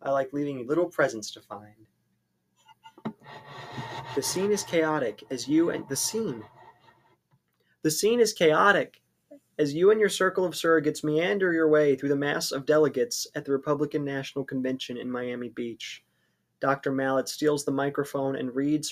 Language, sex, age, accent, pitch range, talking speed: English, male, 20-39, American, 125-150 Hz, 160 wpm